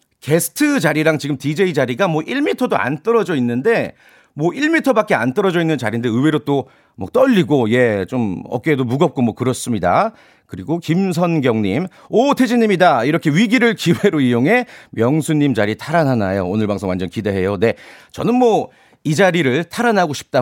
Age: 40-59